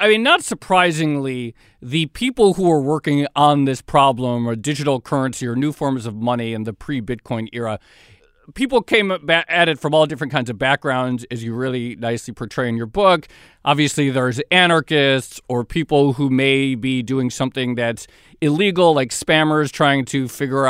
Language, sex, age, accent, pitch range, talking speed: English, male, 40-59, American, 130-160 Hz, 170 wpm